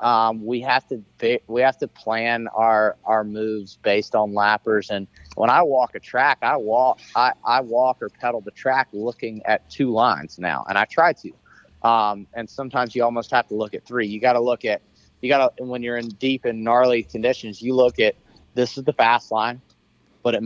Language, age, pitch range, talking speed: English, 30-49, 105-125 Hz, 215 wpm